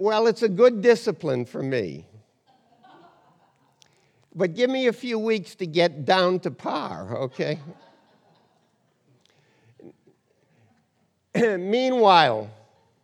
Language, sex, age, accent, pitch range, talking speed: English, male, 60-79, American, 160-210 Hz, 90 wpm